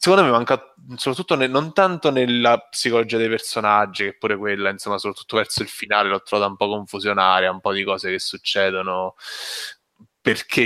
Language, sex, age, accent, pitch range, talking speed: Italian, male, 10-29, native, 100-125 Hz, 175 wpm